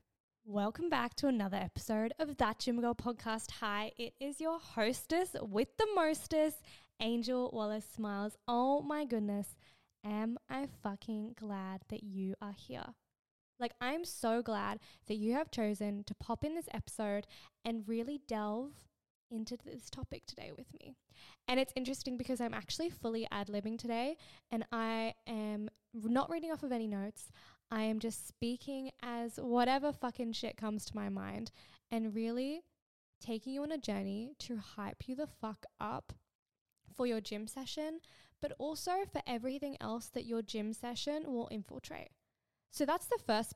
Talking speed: 160 wpm